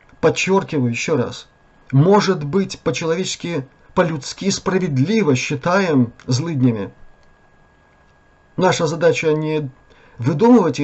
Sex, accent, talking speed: male, native, 80 wpm